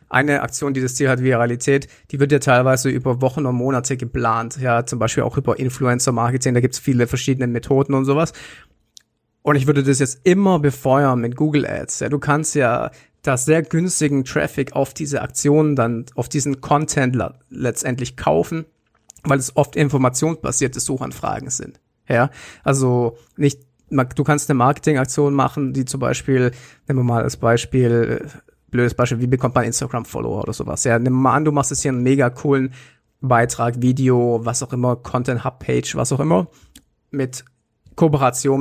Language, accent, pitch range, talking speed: German, German, 125-145 Hz, 170 wpm